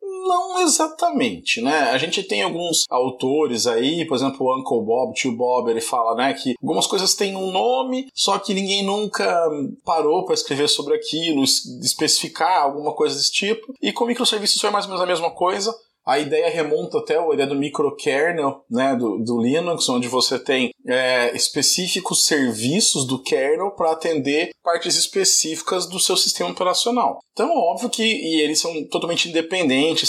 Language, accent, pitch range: Portuguese, Brazilian, 150-240 Hz